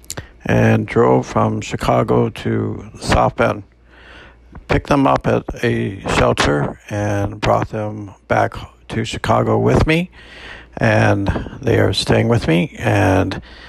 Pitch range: 90-120 Hz